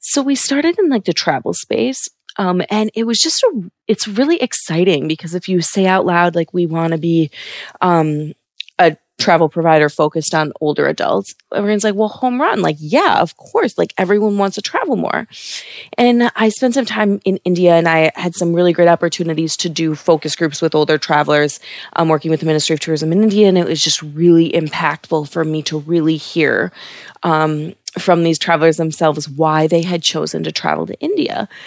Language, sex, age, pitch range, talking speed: English, female, 20-39, 160-210 Hz, 200 wpm